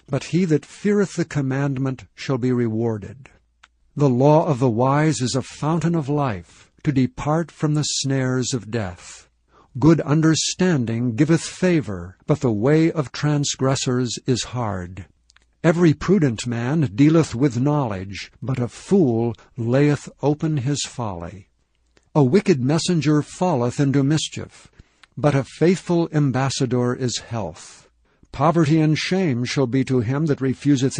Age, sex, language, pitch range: 60-79, male, English, 120-155 Hz